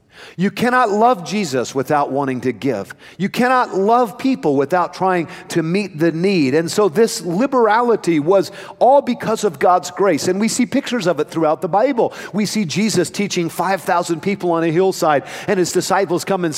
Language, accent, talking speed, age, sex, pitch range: English, American, 185 wpm, 50-69, male, 155-210 Hz